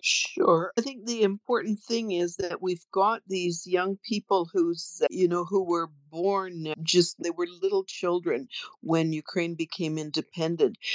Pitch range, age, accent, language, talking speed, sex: 155-190 Hz, 50-69, American, English, 155 wpm, female